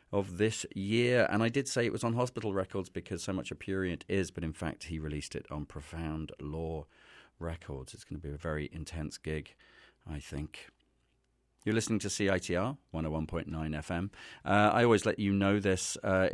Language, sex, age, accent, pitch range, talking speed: English, male, 40-59, British, 80-100 Hz, 185 wpm